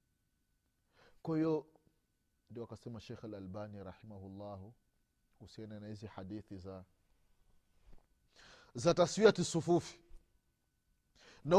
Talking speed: 85 wpm